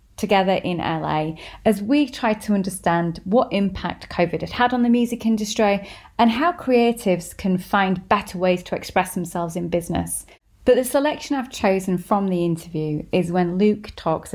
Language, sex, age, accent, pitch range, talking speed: English, female, 30-49, British, 170-220 Hz, 170 wpm